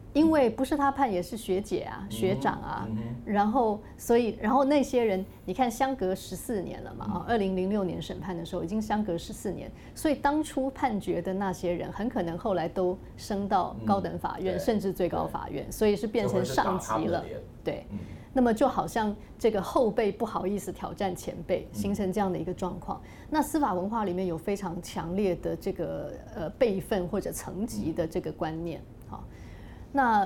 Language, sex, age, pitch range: Chinese, female, 20-39, 180-235 Hz